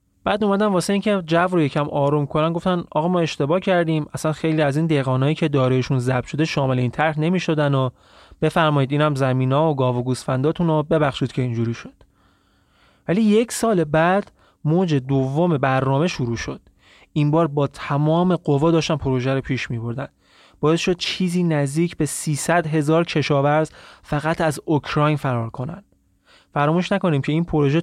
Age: 20-39